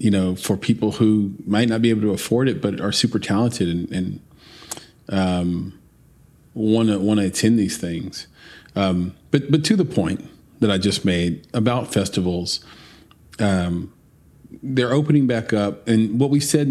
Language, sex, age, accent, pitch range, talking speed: English, male, 40-59, American, 95-115 Hz, 160 wpm